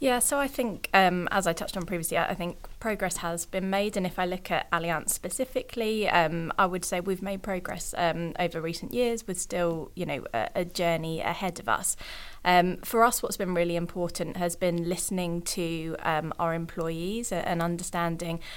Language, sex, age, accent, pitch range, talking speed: English, female, 20-39, British, 165-185 Hz, 195 wpm